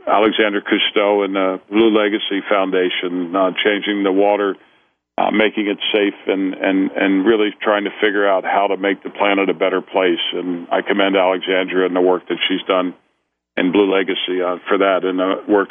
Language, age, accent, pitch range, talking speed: English, 50-69, American, 95-110 Hz, 190 wpm